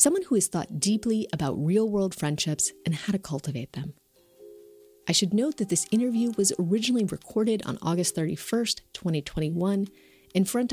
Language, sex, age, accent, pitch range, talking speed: English, female, 30-49, American, 155-210 Hz, 155 wpm